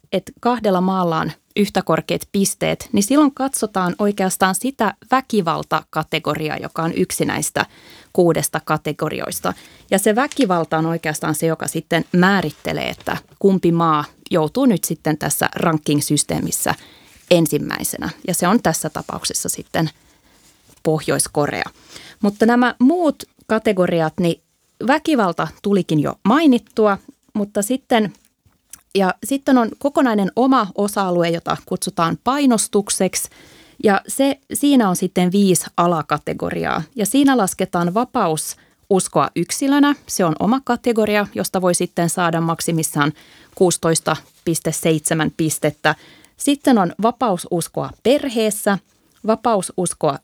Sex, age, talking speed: female, 20-39, 110 wpm